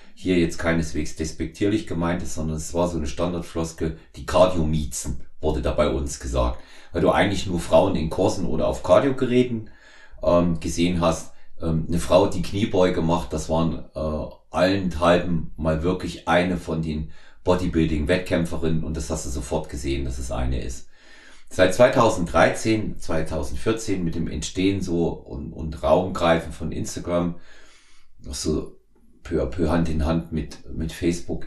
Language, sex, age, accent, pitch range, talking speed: German, male, 40-59, German, 80-90 Hz, 155 wpm